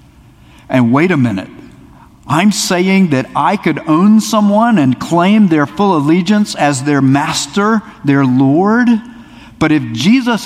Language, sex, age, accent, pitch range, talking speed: English, male, 50-69, American, 125-175 Hz, 140 wpm